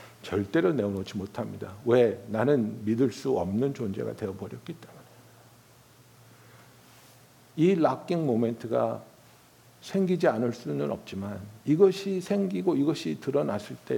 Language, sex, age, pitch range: Korean, male, 60-79, 110-170 Hz